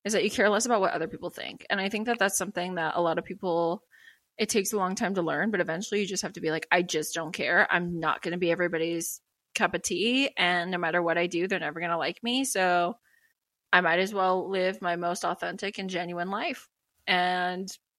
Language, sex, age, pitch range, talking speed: English, female, 20-39, 170-210 Hz, 245 wpm